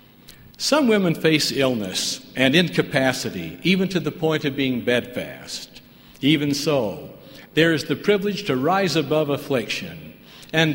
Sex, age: male, 60-79